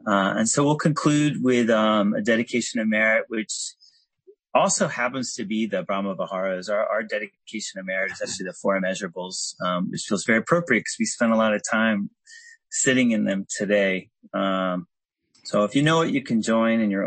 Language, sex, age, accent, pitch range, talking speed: English, male, 30-49, American, 100-120 Hz, 195 wpm